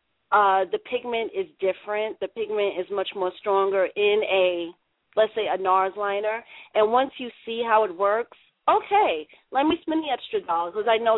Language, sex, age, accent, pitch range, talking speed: English, female, 40-59, American, 200-255 Hz, 190 wpm